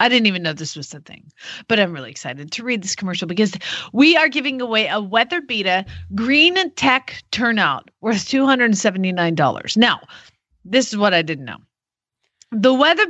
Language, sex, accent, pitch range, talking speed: English, female, American, 200-265 Hz, 175 wpm